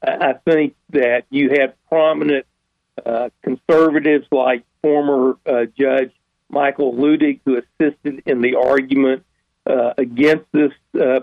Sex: male